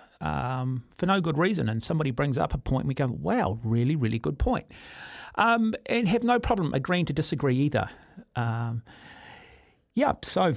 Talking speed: 175 wpm